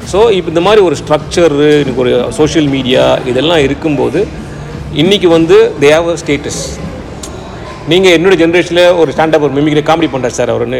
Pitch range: 130-165 Hz